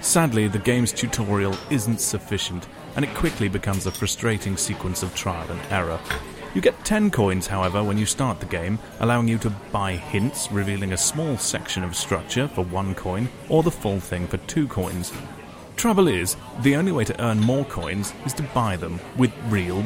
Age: 30-49